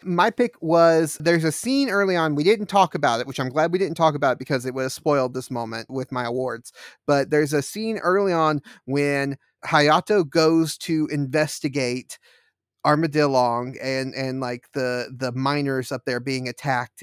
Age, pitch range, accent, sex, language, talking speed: 30-49, 130-170 Hz, American, male, English, 185 wpm